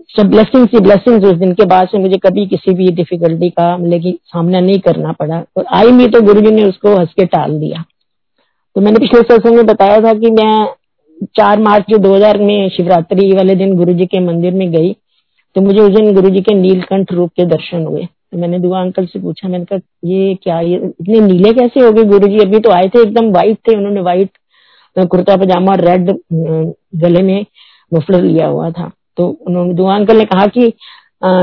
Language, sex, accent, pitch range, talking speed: Hindi, female, native, 180-215 Hz, 195 wpm